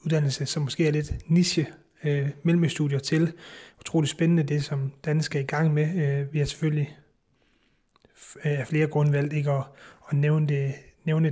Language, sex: Danish, male